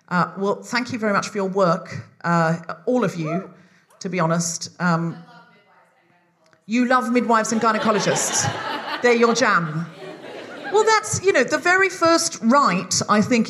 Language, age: English, 40-59